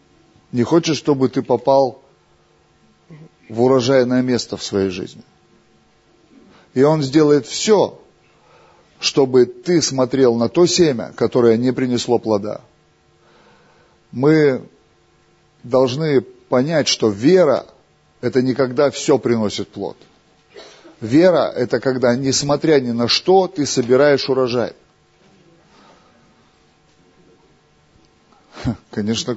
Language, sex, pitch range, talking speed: Russian, male, 115-145 Hz, 95 wpm